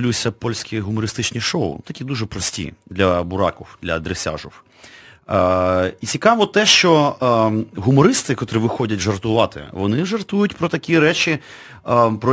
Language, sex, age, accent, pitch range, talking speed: Ukrainian, male, 40-59, native, 95-135 Hz, 130 wpm